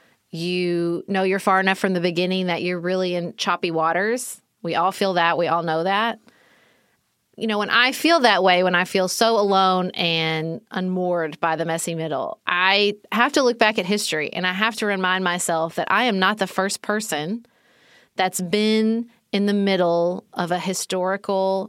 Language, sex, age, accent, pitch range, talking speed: English, female, 30-49, American, 175-225 Hz, 190 wpm